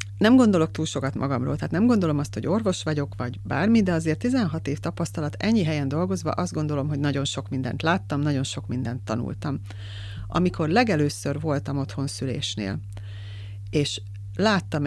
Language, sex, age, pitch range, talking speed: Hungarian, female, 30-49, 105-155 Hz, 160 wpm